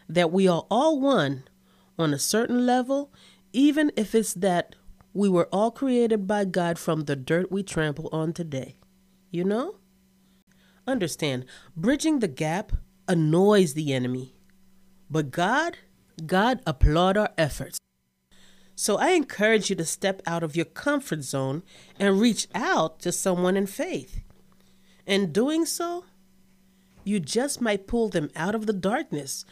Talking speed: 145 wpm